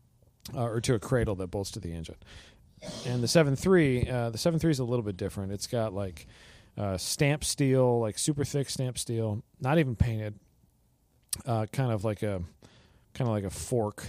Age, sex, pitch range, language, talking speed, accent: 40-59, male, 95-120 Hz, English, 200 wpm, American